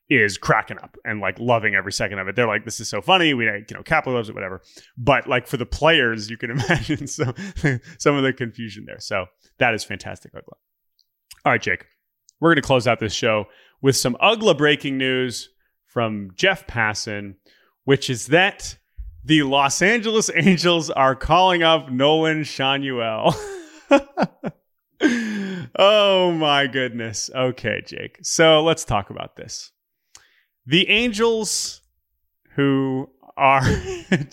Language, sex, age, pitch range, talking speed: English, male, 30-49, 115-165 Hz, 150 wpm